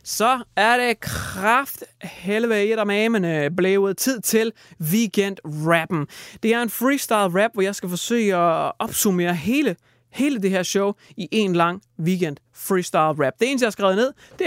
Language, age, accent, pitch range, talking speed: Danish, 30-49, native, 165-215 Hz, 175 wpm